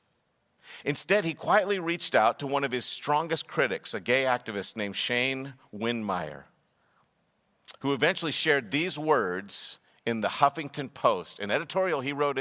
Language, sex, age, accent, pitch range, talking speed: English, male, 50-69, American, 125-165 Hz, 145 wpm